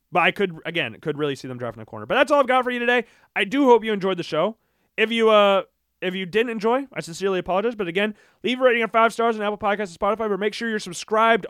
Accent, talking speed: American, 285 wpm